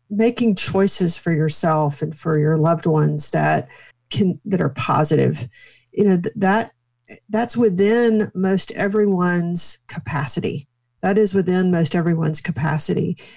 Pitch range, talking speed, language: 155-200 Hz, 125 wpm, English